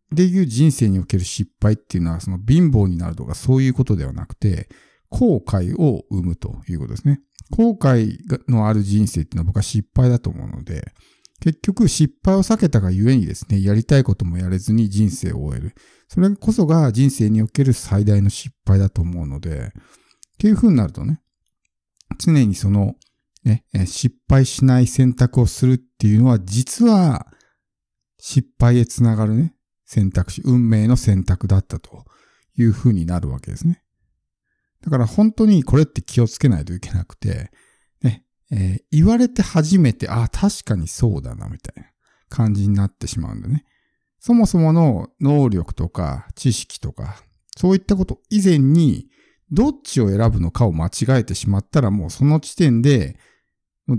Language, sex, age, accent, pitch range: Japanese, male, 50-69, native, 100-145 Hz